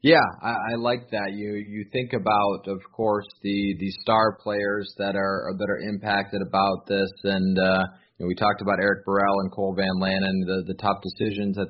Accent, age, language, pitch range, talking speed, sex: American, 20-39, English, 95-110 Hz, 205 wpm, male